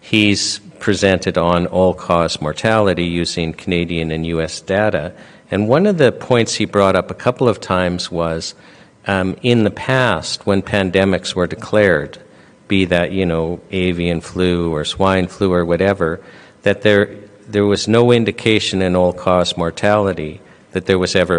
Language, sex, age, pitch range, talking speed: English, male, 50-69, 90-110 Hz, 155 wpm